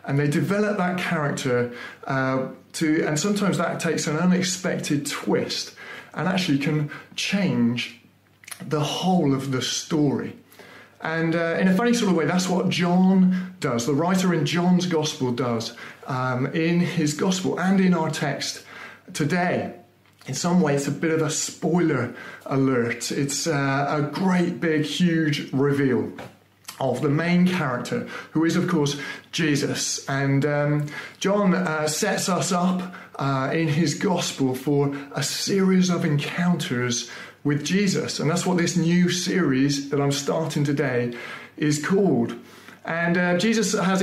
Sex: male